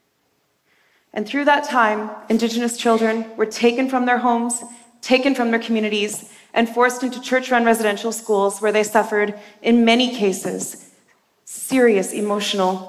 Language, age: Korean, 30-49